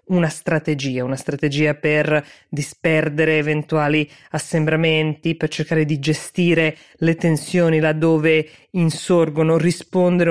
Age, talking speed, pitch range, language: 20-39, 100 wpm, 145-165 Hz, Italian